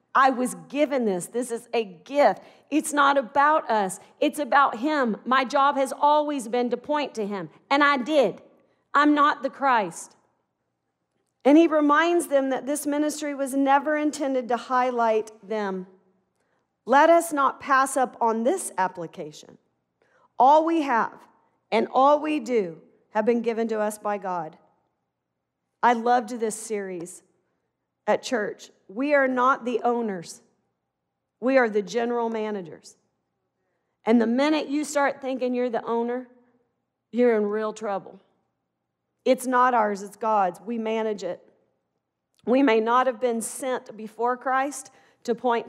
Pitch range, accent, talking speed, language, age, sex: 215-275 Hz, American, 150 wpm, English, 40-59, female